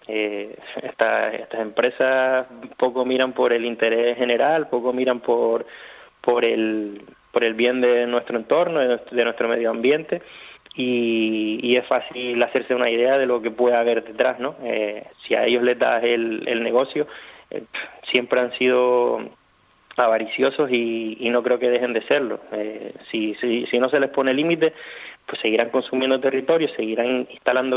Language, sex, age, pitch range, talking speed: Spanish, male, 20-39, 115-125 Hz, 165 wpm